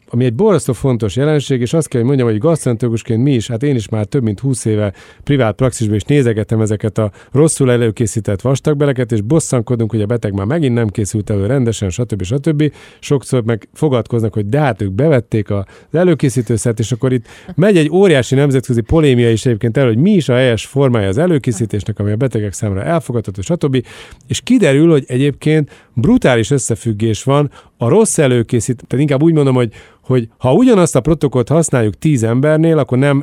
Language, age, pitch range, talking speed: Hungarian, 40-59, 115-145 Hz, 190 wpm